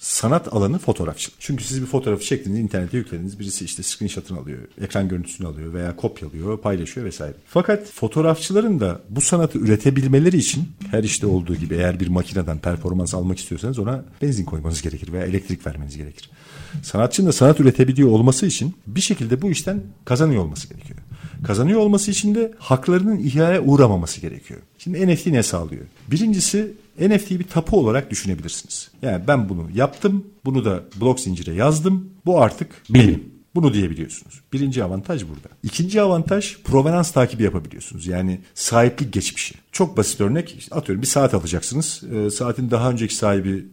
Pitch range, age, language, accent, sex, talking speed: 95-155 Hz, 50-69, Turkish, native, male, 160 wpm